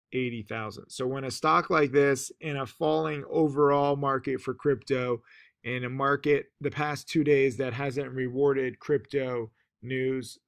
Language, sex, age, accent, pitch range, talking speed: English, male, 20-39, American, 125-145 Hz, 155 wpm